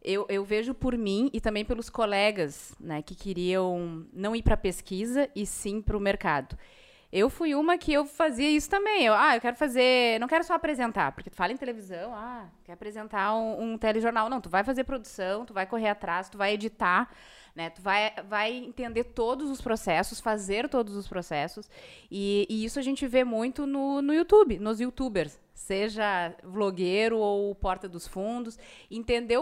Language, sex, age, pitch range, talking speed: Portuguese, female, 20-39, 195-250 Hz, 190 wpm